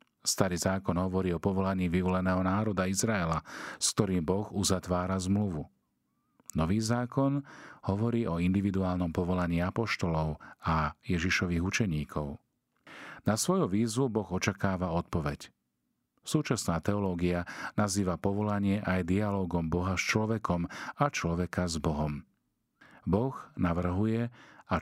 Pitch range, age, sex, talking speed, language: 85-105 Hz, 40-59, male, 110 wpm, Slovak